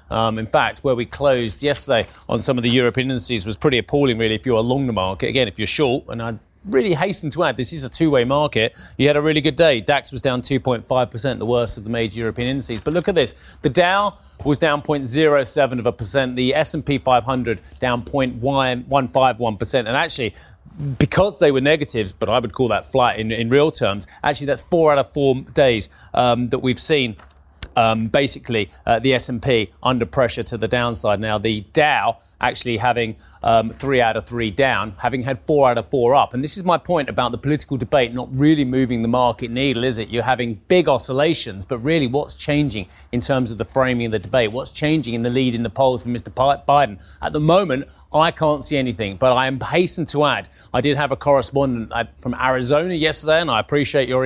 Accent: British